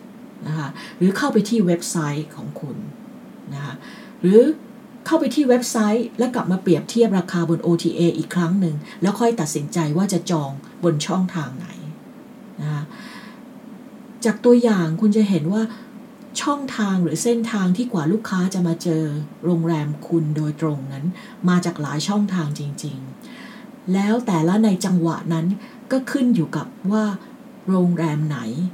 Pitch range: 165-230 Hz